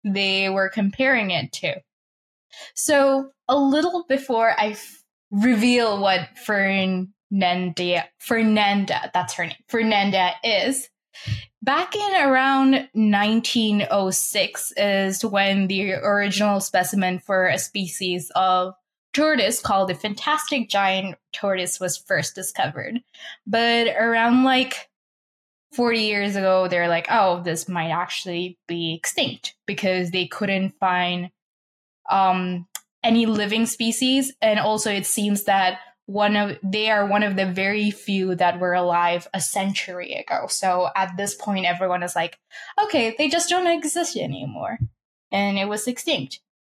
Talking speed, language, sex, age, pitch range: 130 wpm, English, female, 10-29, 185-235 Hz